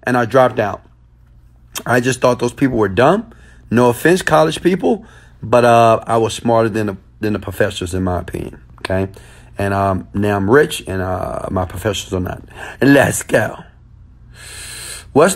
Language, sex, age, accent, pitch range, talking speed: English, male, 30-49, American, 90-125 Hz, 170 wpm